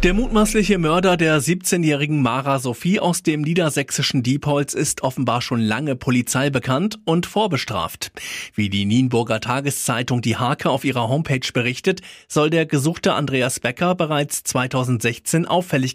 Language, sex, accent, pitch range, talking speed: German, male, German, 120-160 Hz, 135 wpm